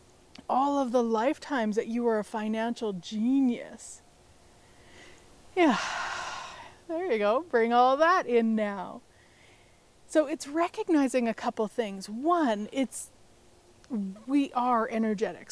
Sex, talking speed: female, 120 wpm